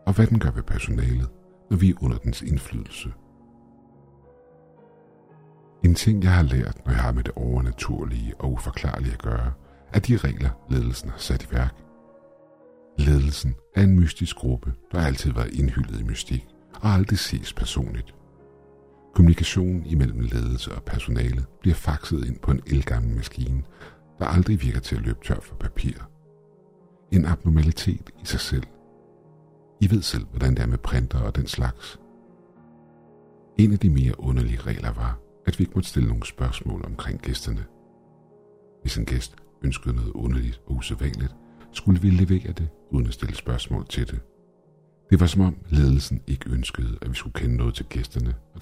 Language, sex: Danish, male